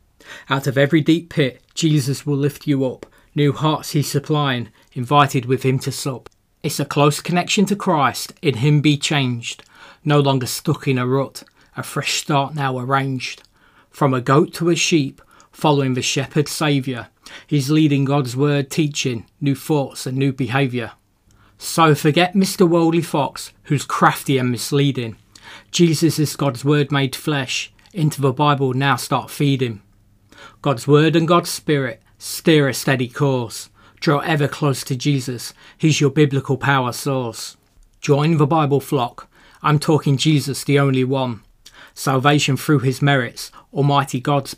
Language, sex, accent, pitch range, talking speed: English, male, British, 130-150 Hz, 155 wpm